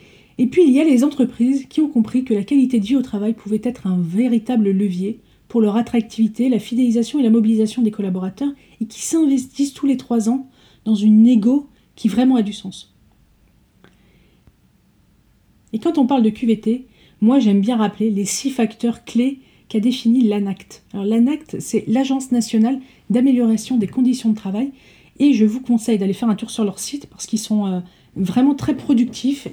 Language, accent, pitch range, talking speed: French, French, 210-255 Hz, 185 wpm